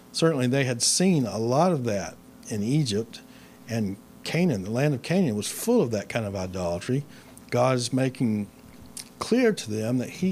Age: 60-79